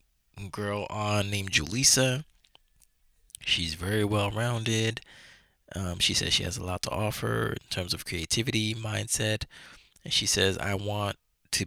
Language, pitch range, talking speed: English, 85-105 Hz, 140 wpm